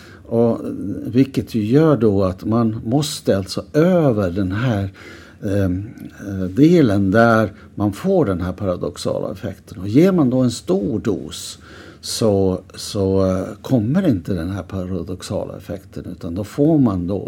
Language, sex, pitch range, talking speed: Swedish, male, 95-125 Hz, 135 wpm